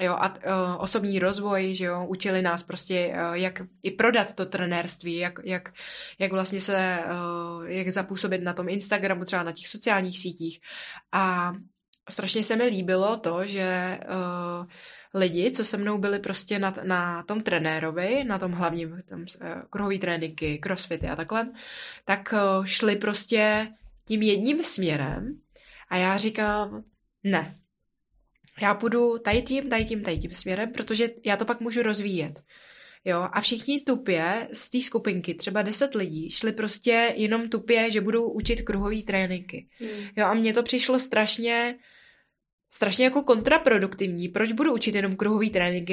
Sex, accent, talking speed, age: female, native, 155 wpm, 20-39